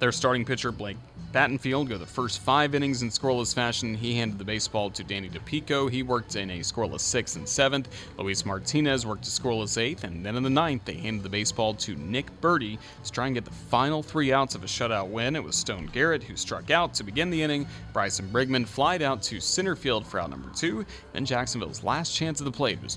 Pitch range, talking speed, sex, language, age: 105-140 Hz, 230 wpm, male, English, 30-49